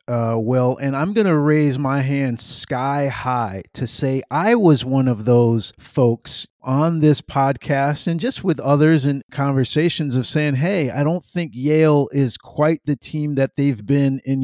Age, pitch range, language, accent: 50-69, 130-150 Hz, English, American